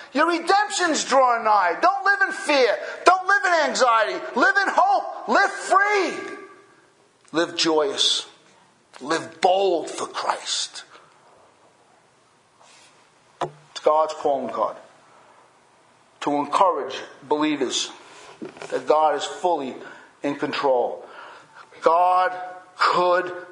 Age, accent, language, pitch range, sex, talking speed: 50-69, American, English, 170-270 Hz, male, 95 wpm